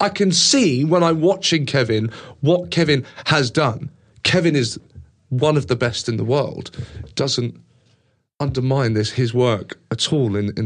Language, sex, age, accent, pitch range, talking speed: English, male, 40-59, British, 120-175 Hz, 165 wpm